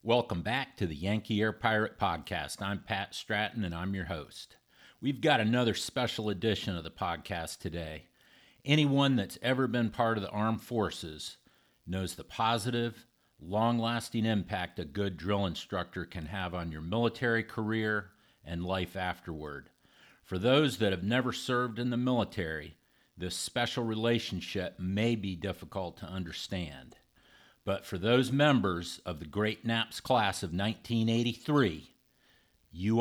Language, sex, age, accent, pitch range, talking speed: English, male, 50-69, American, 90-115 Hz, 145 wpm